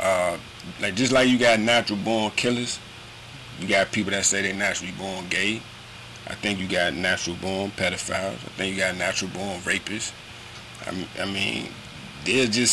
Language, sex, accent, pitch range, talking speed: English, male, American, 100-120 Hz, 185 wpm